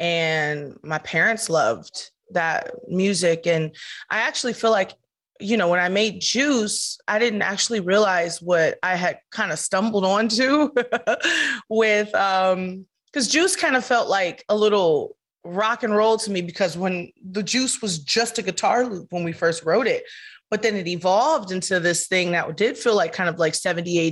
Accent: American